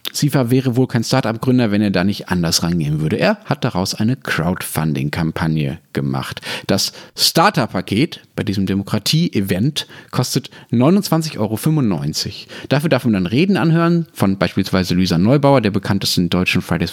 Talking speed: 140 wpm